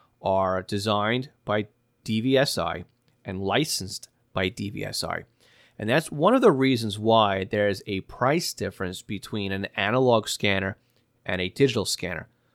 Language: English